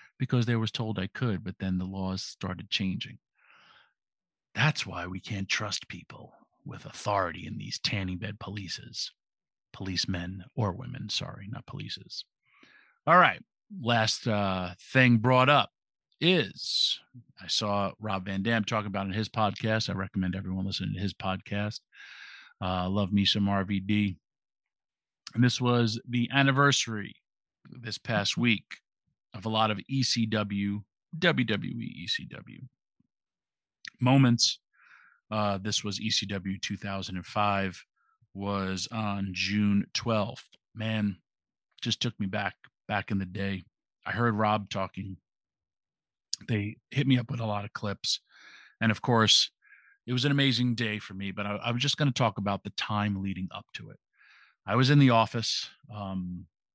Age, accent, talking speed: 50-69, American, 145 wpm